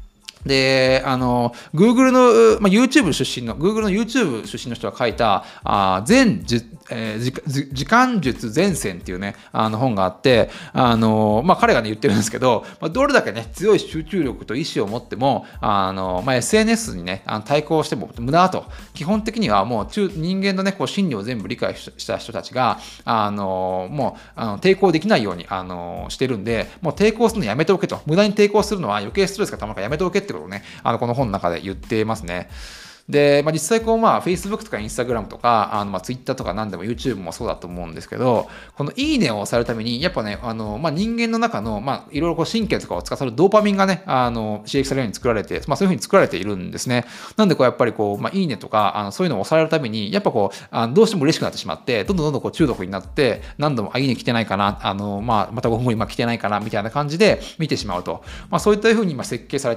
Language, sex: Japanese, male